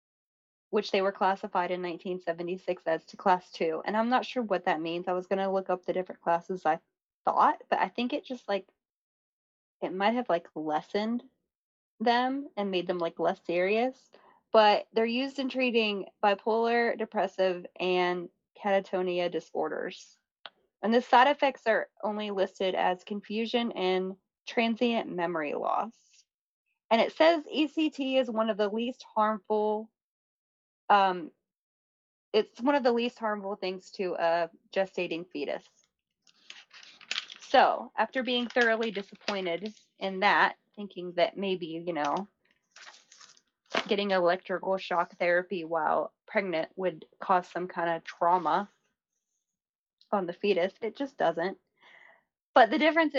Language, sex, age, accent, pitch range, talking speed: English, female, 20-39, American, 180-230 Hz, 140 wpm